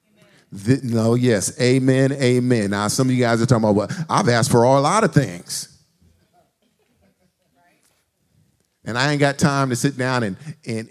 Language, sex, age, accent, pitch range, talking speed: English, male, 50-69, American, 135-180 Hz, 165 wpm